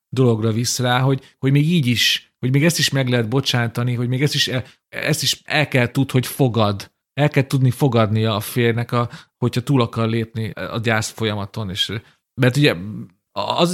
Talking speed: 195 wpm